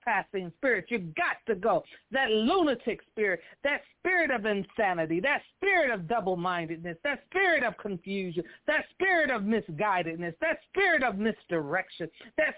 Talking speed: 145 wpm